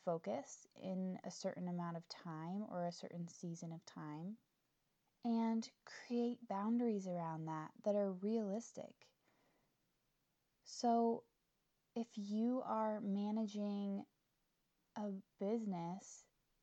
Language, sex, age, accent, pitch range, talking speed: English, female, 20-39, American, 180-230 Hz, 100 wpm